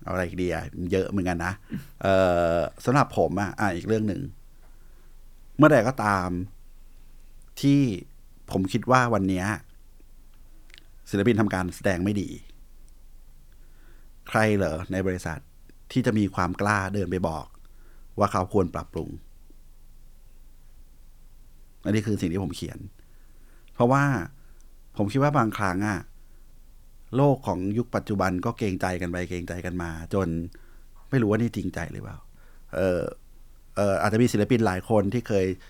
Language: Thai